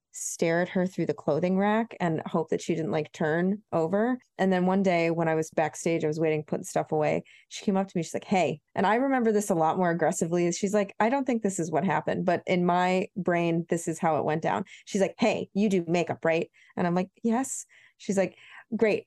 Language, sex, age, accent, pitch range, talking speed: English, female, 20-39, American, 165-205 Hz, 245 wpm